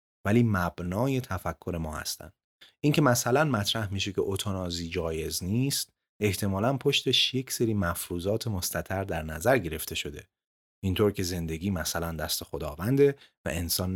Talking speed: 135 wpm